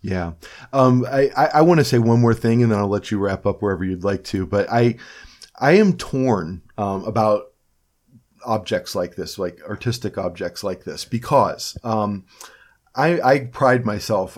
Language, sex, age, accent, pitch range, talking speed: English, male, 40-59, American, 100-125 Hz, 180 wpm